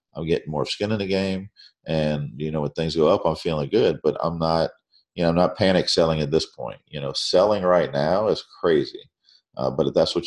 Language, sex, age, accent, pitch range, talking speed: English, male, 40-59, American, 75-90 Hz, 240 wpm